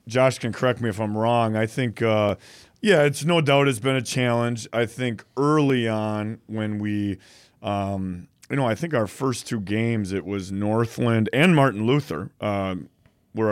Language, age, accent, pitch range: English, 30-49, American, 110-130 Hz